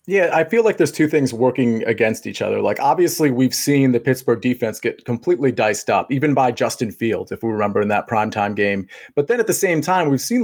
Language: English